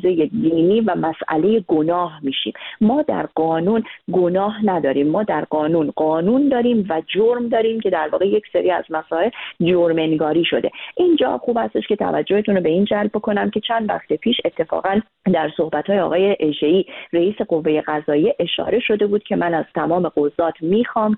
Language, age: Persian, 30-49